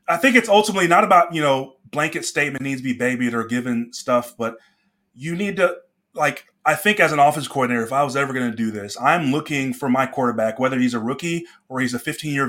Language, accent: English, American